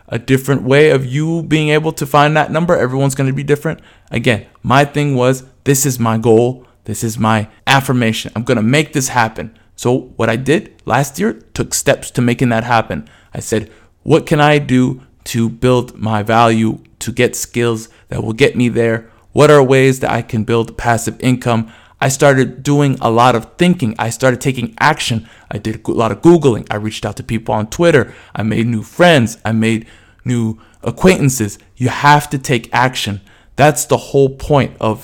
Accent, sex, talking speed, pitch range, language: American, male, 195 wpm, 115-140 Hz, English